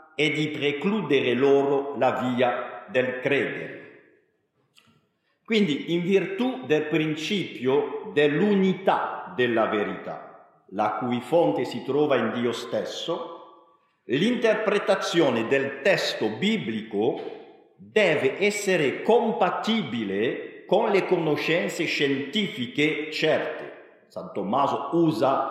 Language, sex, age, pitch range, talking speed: English, male, 50-69, 145-200 Hz, 90 wpm